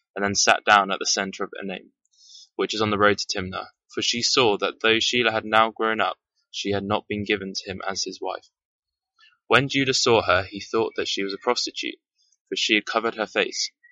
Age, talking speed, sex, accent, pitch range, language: 20-39, 230 wpm, male, British, 100-130 Hz, English